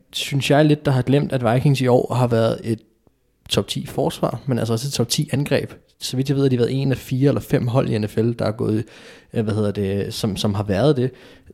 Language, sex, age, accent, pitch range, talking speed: Danish, male, 20-39, native, 105-130 Hz, 260 wpm